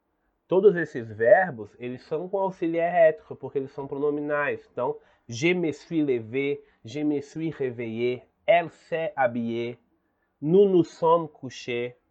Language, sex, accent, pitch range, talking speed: Portuguese, male, Brazilian, 120-175 Hz, 140 wpm